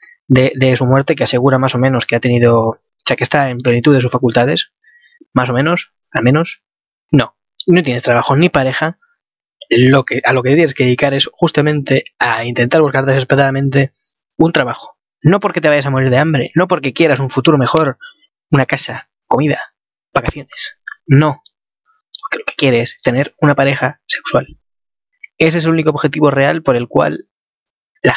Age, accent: 20-39, Spanish